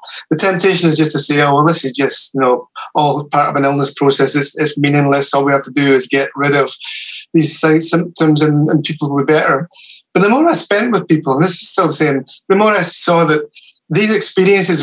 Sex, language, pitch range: male, English, 140-175 Hz